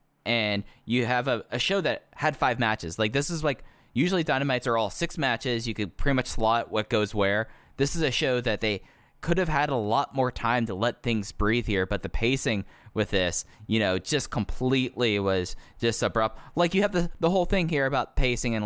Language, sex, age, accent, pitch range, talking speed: English, male, 20-39, American, 105-135 Hz, 220 wpm